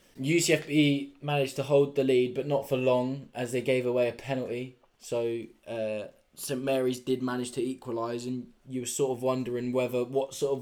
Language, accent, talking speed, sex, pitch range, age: English, British, 190 wpm, male, 110-125 Hz, 10-29